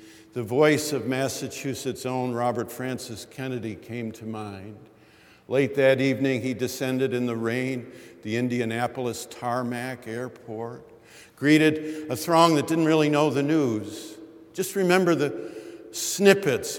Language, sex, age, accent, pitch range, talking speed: English, male, 50-69, American, 115-155 Hz, 130 wpm